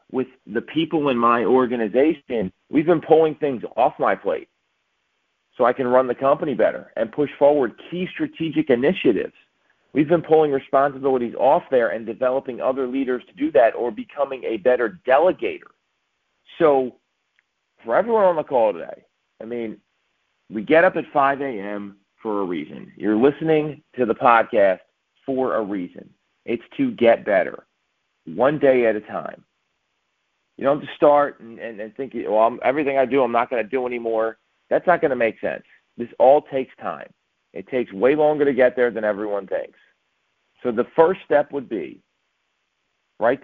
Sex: male